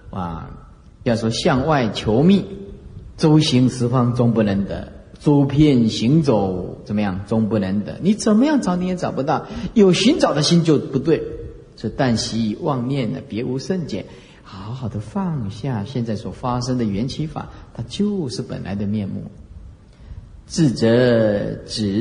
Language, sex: Chinese, male